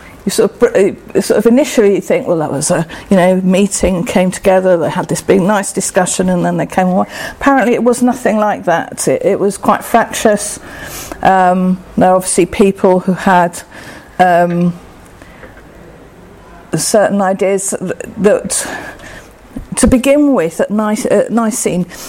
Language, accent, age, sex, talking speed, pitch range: English, British, 50-69, female, 155 wpm, 180-245 Hz